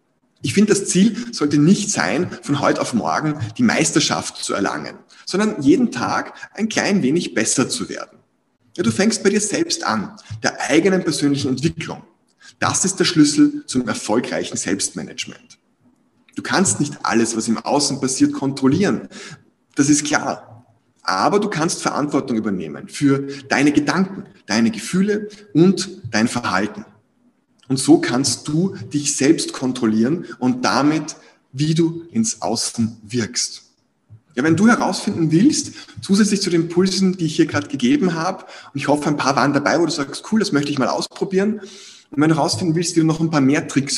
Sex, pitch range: male, 140-195 Hz